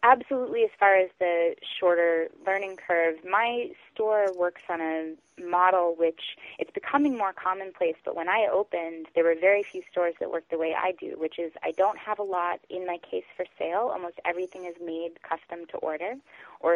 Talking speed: 195 wpm